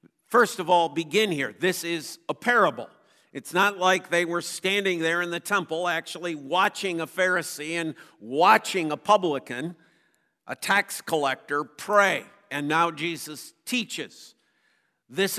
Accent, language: American, English